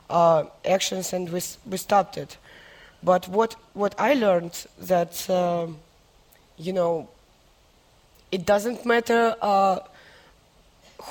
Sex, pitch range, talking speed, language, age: female, 185-220 Hz, 115 wpm, English, 20-39